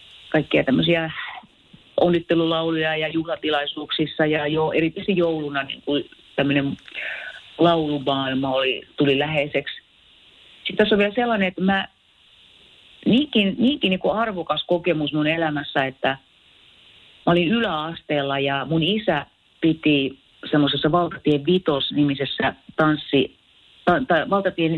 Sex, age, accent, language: female, 40-59, native, Finnish